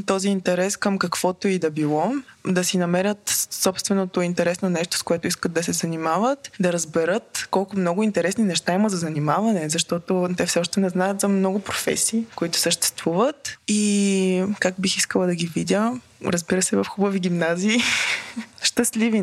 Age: 20-39